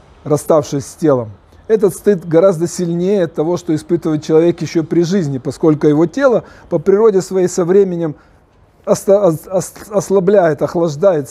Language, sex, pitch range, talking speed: Russian, male, 135-180 Hz, 125 wpm